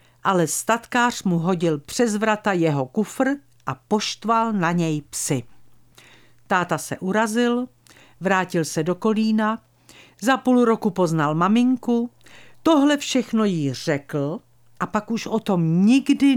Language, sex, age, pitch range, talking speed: Czech, female, 50-69, 135-225 Hz, 130 wpm